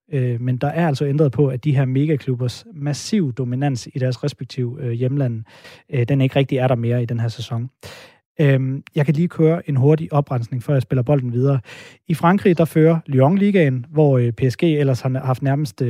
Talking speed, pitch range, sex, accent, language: 190 wpm, 130-155 Hz, male, native, Danish